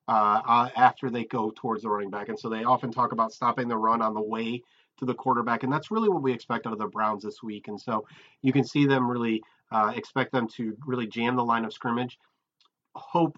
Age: 30-49